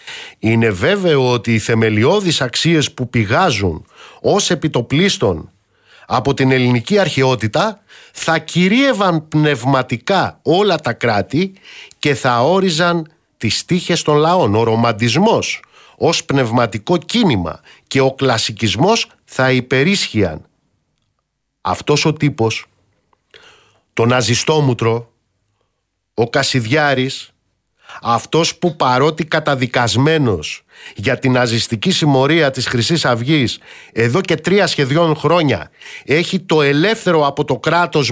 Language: Greek